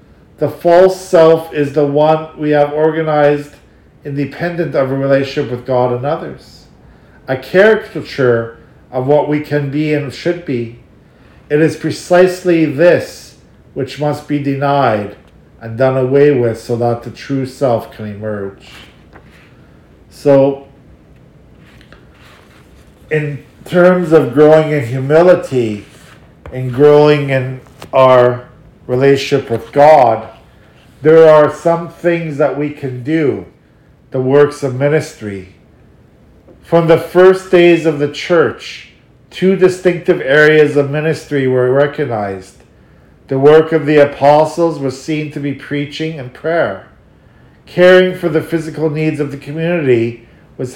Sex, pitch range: male, 130-160 Hz